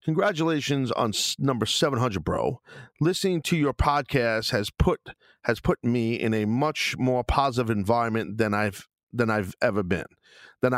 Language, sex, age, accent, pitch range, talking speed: English, male, 40-59, American, 105-135 Hz, 150 wpm